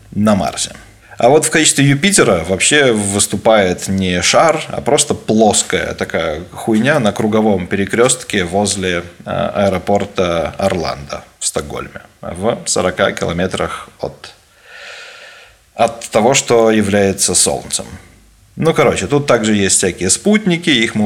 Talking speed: 120 wpm